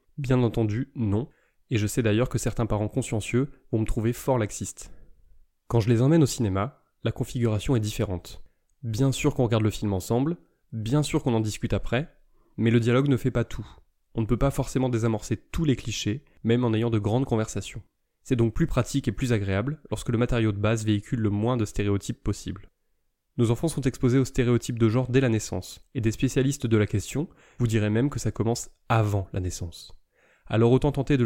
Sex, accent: male, French